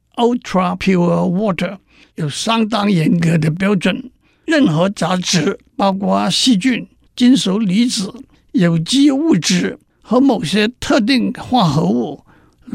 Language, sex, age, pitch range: Chinese, male, 60-79, 180-245 Hz